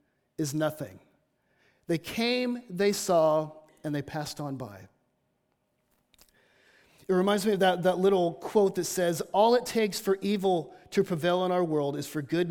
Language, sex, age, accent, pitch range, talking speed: English, male, 30-49, American, 165-215 Hz, 165 wpm